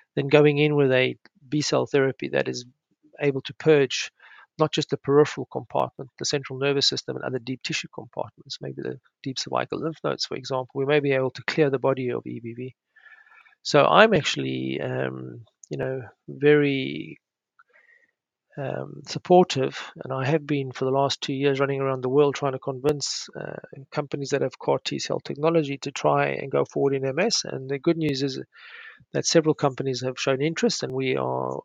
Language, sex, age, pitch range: English, male, 40-59, 130-150 Hz